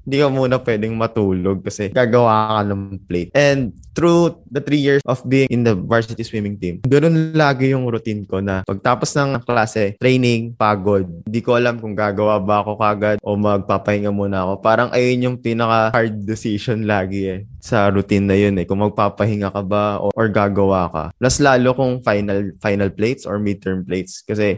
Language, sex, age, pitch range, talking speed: Filipino, male, 20-39, 100-120 Hz, 185 wpm